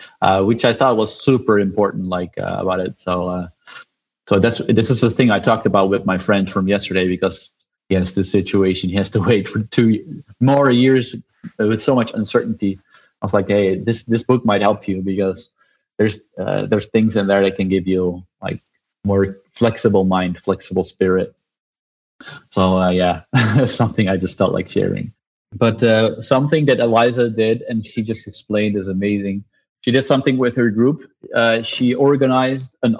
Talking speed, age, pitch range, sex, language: 185 wpm, 20-39, 100-125 Hz, male, English